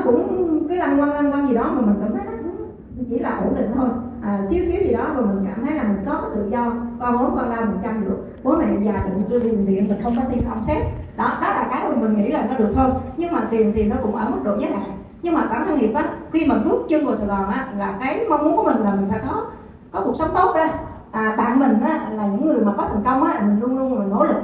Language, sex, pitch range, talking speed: Vietnamese, female, 215-280 Hz, 285 wpm